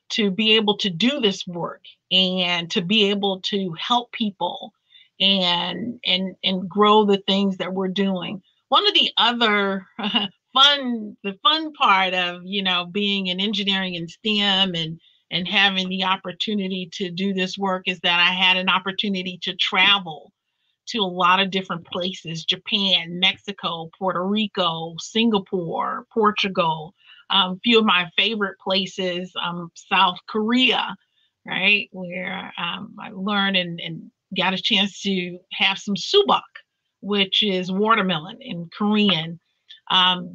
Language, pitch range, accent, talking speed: English, 185-210 Hz, American, 145 wpm